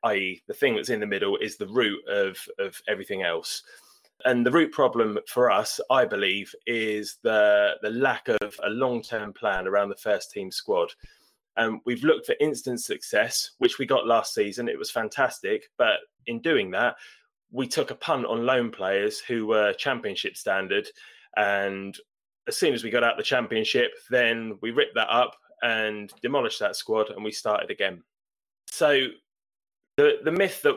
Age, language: 20-39, English